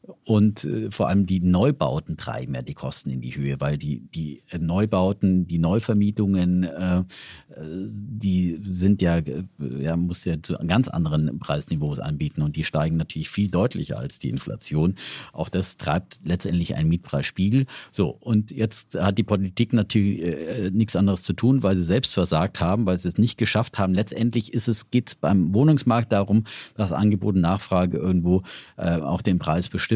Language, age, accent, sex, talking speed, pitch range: German, 50-69, German, male, 170 wpm, 90-110 Hz